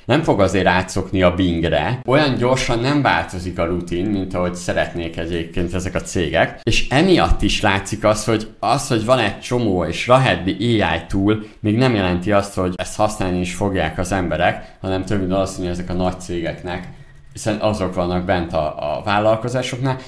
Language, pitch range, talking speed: Hungarian, 85-110 Hz, 180 wpm